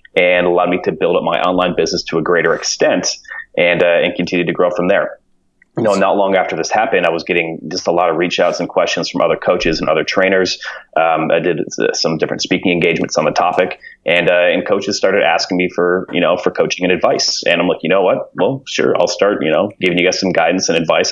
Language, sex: English, male